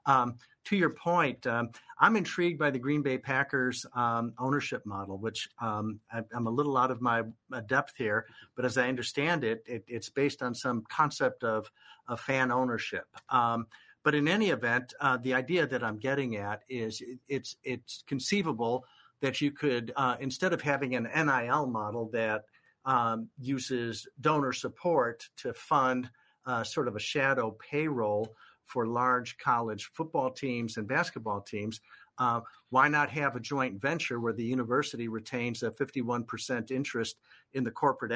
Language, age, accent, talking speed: English, 50-69, American, 165 wpm